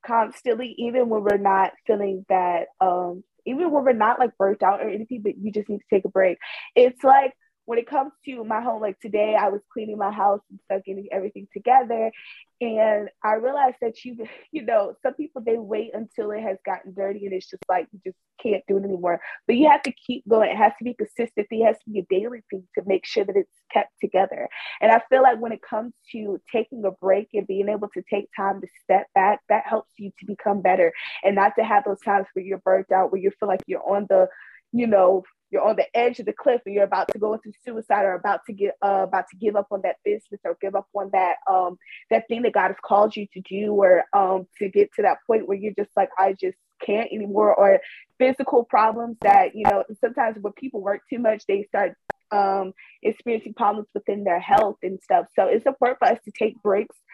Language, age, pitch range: English, 20-39, 195-235 Hz